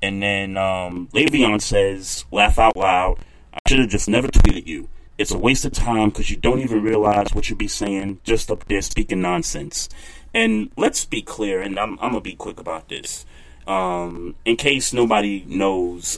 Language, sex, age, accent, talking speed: English, male, 30-49, American, 195 wpm